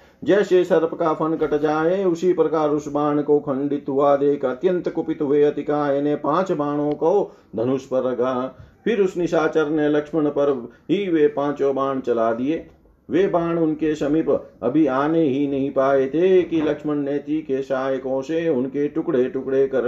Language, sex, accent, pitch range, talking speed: Hindi, male, native, 135-160 Hz, 150 wpm